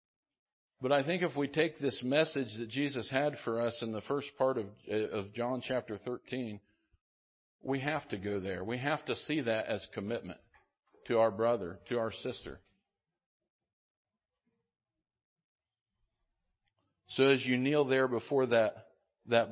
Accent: American